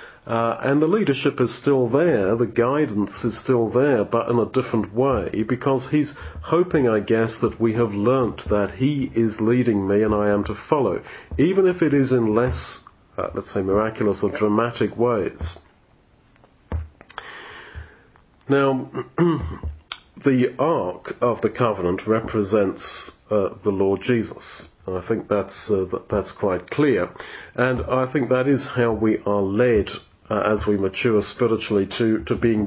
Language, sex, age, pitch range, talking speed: English, male, 40-59, 105-130 Hz, 155 wpm